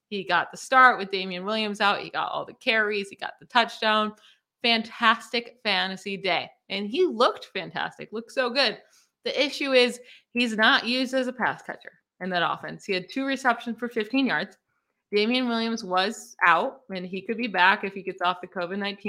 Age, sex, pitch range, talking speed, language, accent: 20-39, female, 195-235 Hz, 195 wpm, English, American